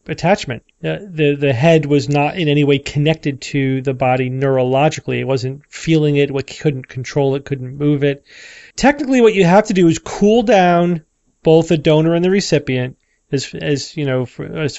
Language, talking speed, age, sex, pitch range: English, 190 wpm, 40-59, male, 130-155 Hz